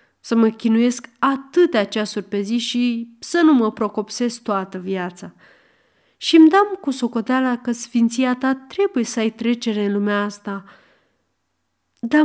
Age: 30-49